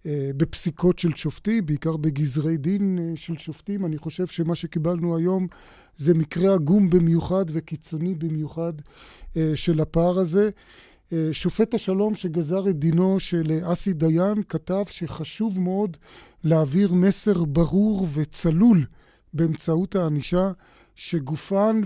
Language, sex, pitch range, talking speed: Hebrew, male, 165-195 Hz, 110 wpm